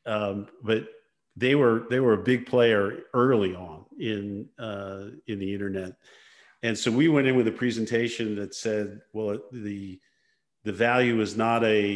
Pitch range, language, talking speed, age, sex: 105-120 Hz, English, 165 wpm, 50-69, male